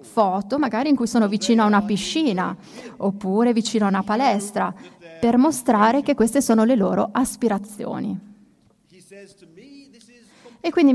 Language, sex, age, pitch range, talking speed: Italian, female, 30-49, 205-255 Hz, 130 wpm